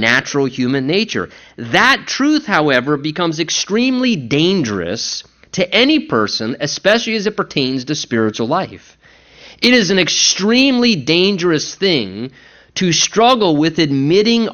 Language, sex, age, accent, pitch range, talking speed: English, male, 30-49, American, 140-205 Hz, 120 wpm